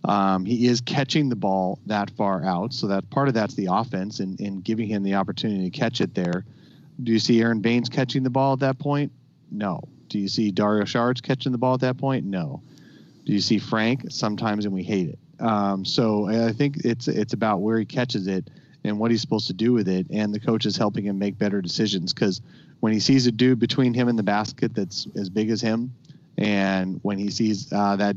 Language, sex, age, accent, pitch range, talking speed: English, male, 30-49, American, 100-135 Hz, 230 wpm